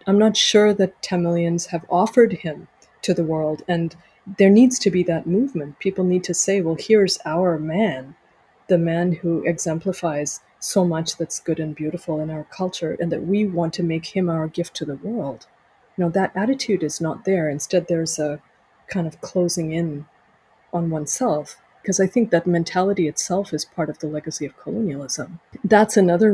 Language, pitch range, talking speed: English, 160-195 Hz, 185 wpm